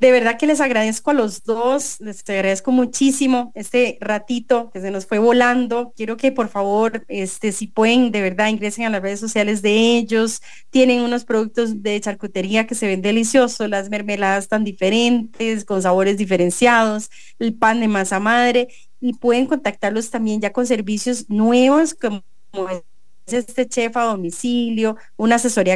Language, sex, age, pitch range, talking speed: English, female, 30-49, 210-245 Hz, 165 wpm